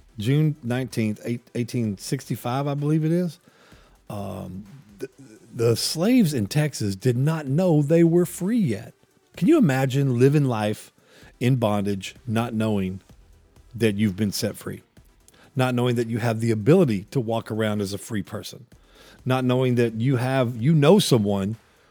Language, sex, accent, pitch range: English, male, American, 105-130 Hz